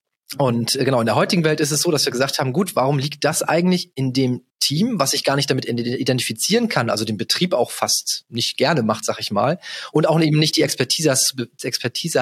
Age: 30-49